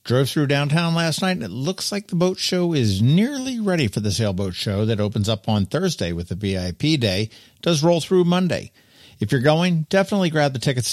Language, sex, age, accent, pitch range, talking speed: English, male, 50-69, American, 105-155 Hz, 215 wpm